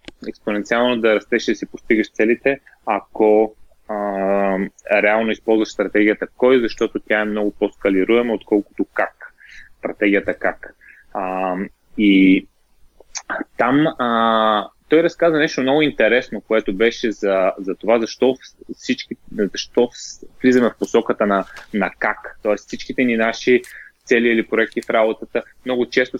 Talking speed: 130 wpm